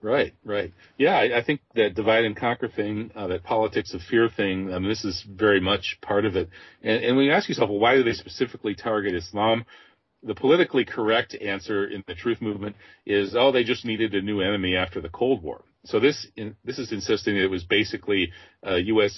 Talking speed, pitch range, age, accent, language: 220 wpm, 95-115 Hz, 40-59, American, English